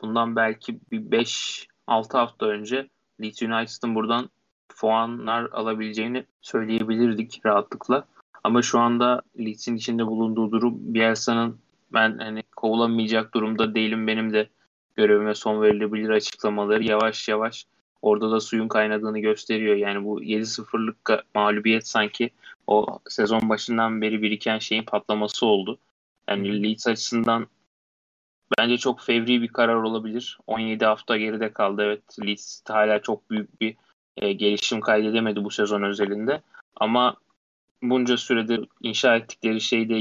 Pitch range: 105-115 Hz